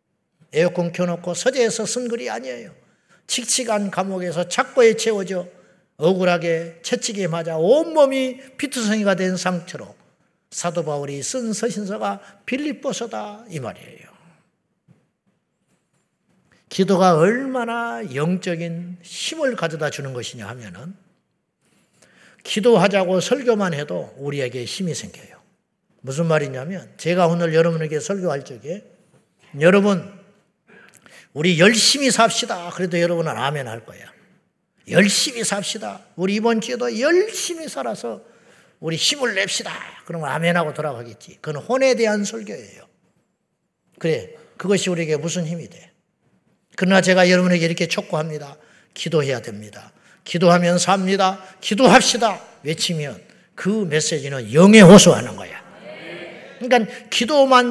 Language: Korean